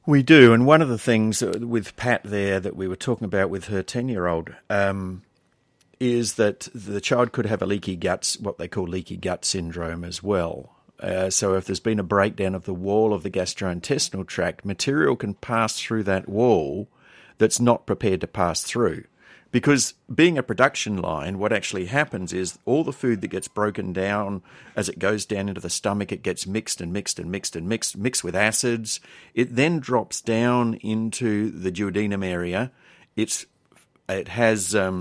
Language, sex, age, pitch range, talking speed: English, male, 50-69, 95-120 Hz, 185 wpm